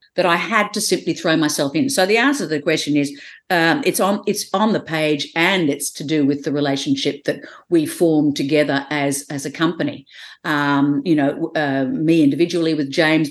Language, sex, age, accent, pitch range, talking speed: English, female, 50-69, Australian, 150-195 Hz, 205 wpm